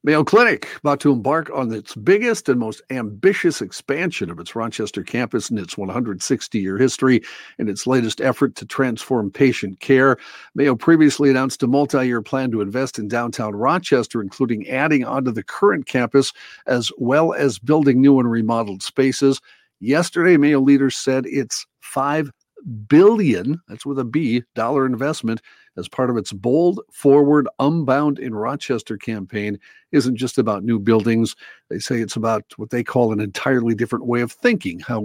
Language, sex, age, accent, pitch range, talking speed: English, male, 50-69, American, 115-140 Hz, 165 wpm